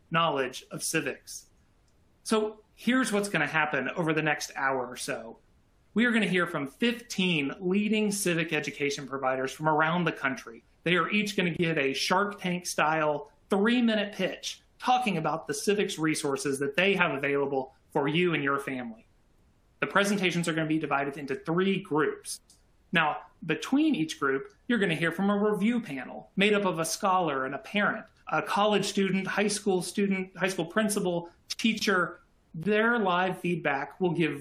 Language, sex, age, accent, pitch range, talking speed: English, male, 30-49, American, 150-205 Hz, 180 wpm